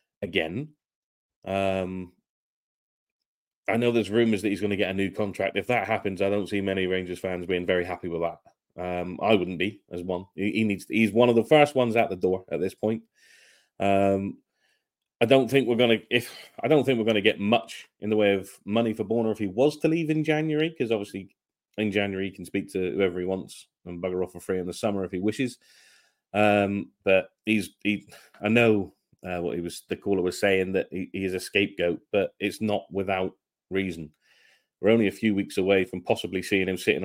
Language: English